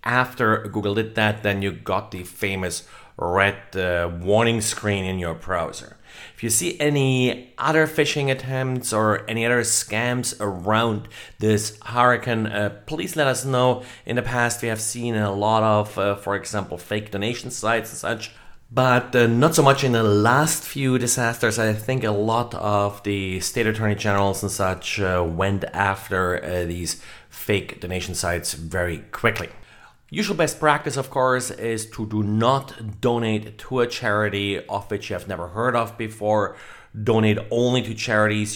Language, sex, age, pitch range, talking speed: English, male, 30-49, 100-125 Hz, 170 wpm